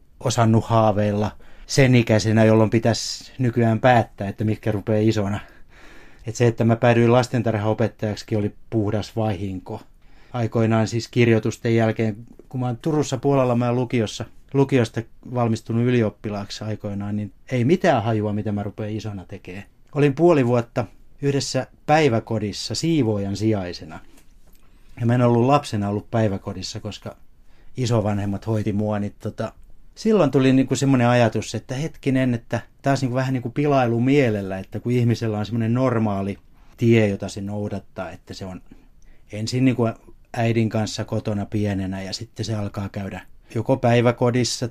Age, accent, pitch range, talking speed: 30-49, native, 105-125 Hz, 140 wpm